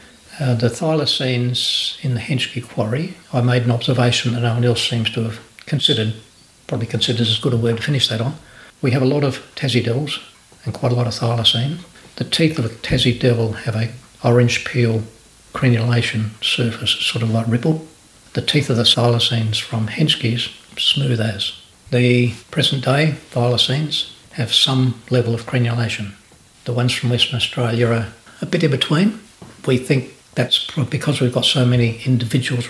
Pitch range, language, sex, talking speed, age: 115-130 Hz, English, male, 175 wpm, 60-79